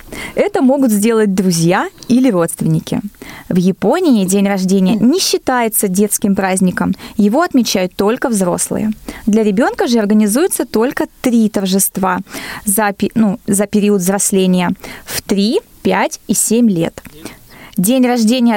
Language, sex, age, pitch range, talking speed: Russian, female, 20-39, 195-245 Hz, 125 wpm